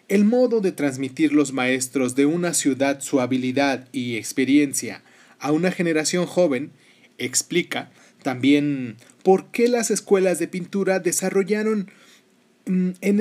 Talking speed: 125 wpm